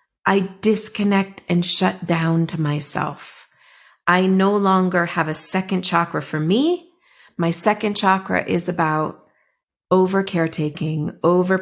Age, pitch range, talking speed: 40-59, 165-195 Hz, 125 wpm